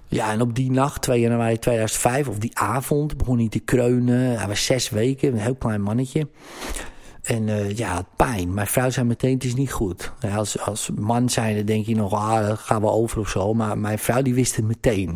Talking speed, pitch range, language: 225 wpm, 105-125 Hz, Dutch